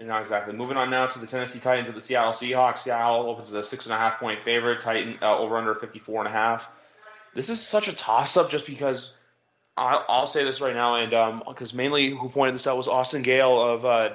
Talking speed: 250 wpm